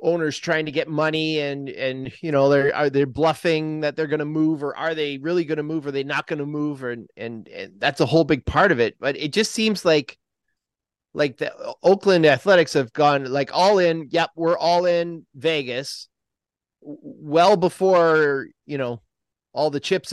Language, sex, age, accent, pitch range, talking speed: English, male, 30-49, American, 140-175 Hz, 205 wpm